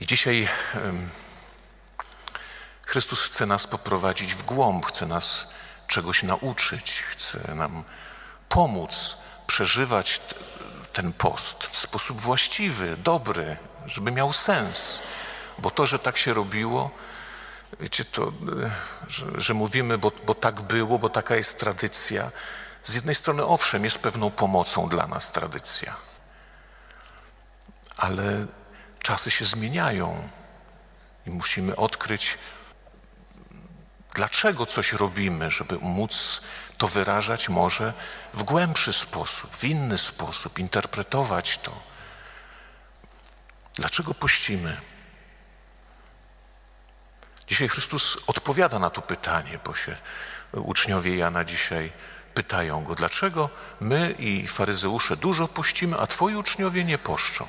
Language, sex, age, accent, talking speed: Polish, male, 50-69, native, 110 wpm